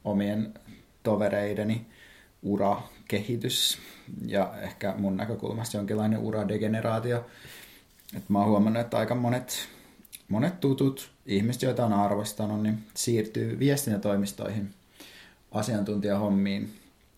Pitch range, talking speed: 105-120 Hz, 95 wpm